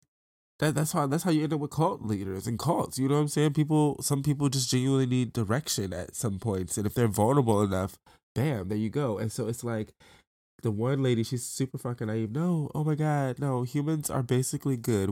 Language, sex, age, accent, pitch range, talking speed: English, male, 20-39, American, 95-130 Hz, 225 wpm